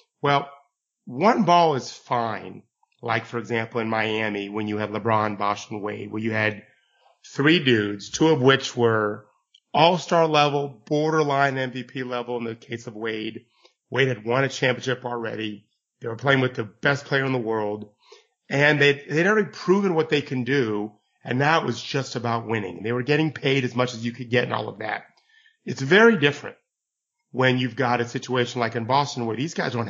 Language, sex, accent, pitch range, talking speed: English, male, American, 115-155 Hz, 195 wpm